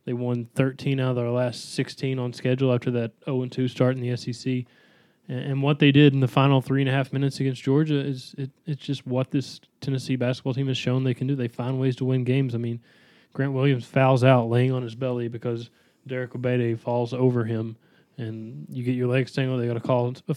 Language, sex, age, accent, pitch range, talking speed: English, male, 20-39, American, 120-135 Hz, 225 wpm